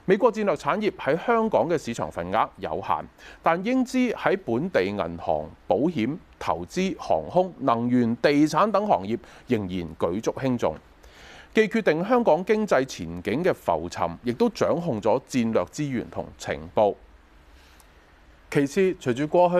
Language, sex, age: Chinese, male, 30-49